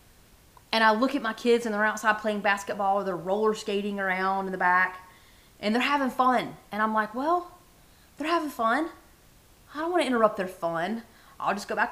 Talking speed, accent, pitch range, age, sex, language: 205 wpm, American, 200-255 Hz, 30-49, female, English